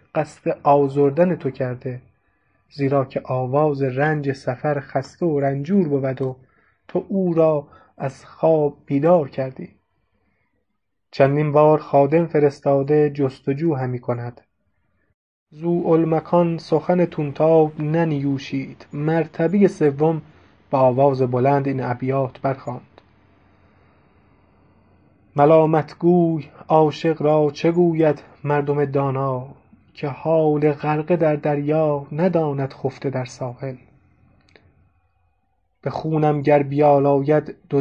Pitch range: 135-155 Hz